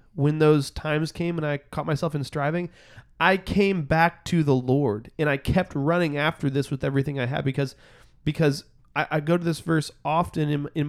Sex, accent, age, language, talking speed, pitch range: male, American, 30-49, English, 205 wpm, 140-170 Hz